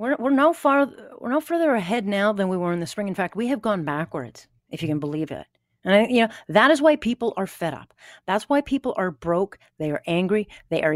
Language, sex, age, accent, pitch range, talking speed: English, female, 40-59, American, 165-250 Hz, 255 wpm